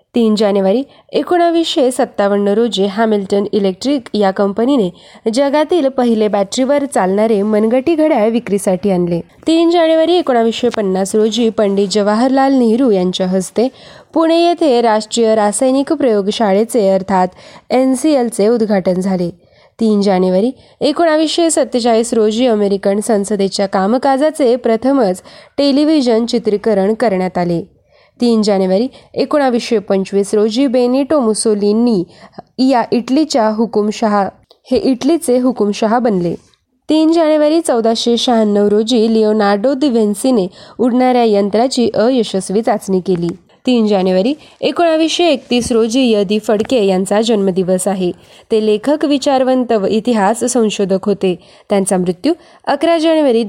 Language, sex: Marathi, female